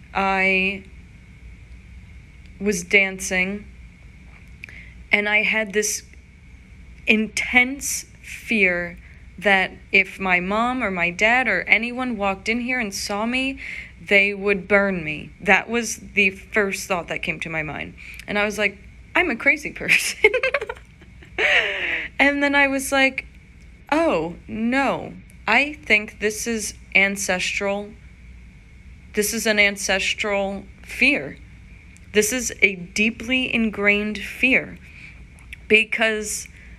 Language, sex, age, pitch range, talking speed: English, female, 30-49, 195-250 Hz, 115 wpm